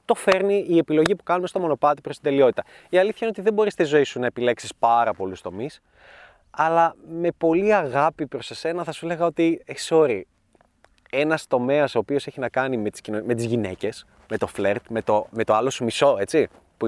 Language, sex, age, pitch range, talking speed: Greek, male, 20-39, 120-170 Hz, 210 wpm